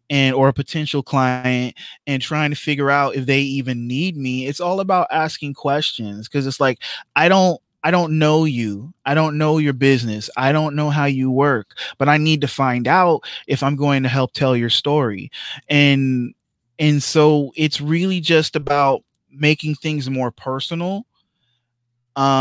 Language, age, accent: English, 20-39, American